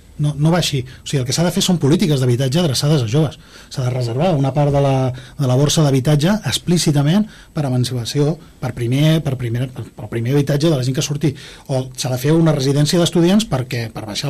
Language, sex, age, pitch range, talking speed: Spanish, male, 40-59, 130-155 Hz, 215 wpm